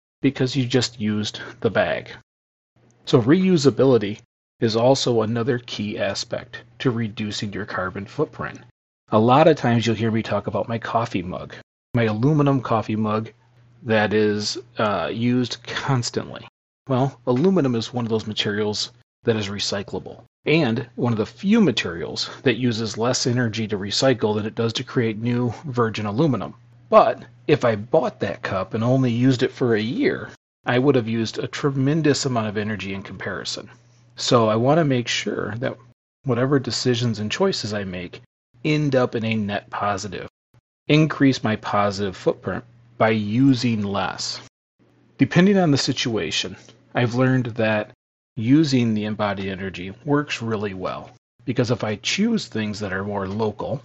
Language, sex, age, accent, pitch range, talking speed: English, male, 40-59, American, 105-130 Hz, 160 wpm